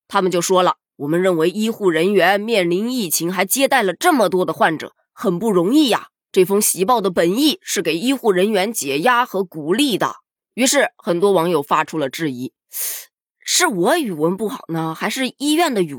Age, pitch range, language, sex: 20-39, 170-265 Hz, Chinese, female